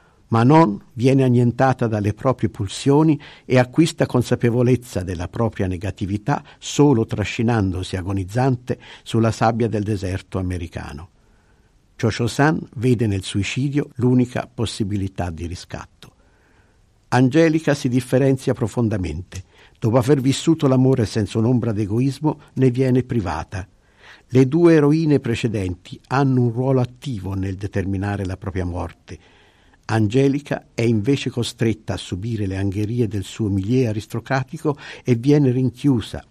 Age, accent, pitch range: 50-69, native, 100-130 Hz